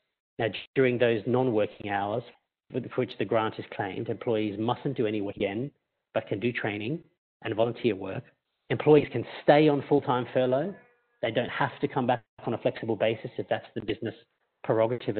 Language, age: English, 40-59